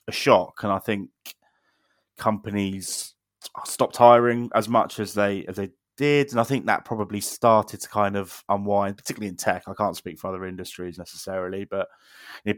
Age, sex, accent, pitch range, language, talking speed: 20-39, male, British, 95-105 Hz, English, 175 wpm